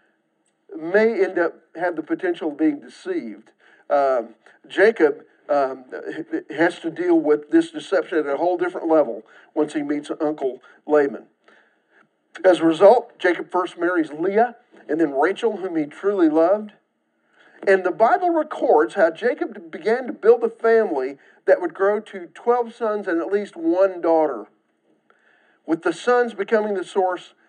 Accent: American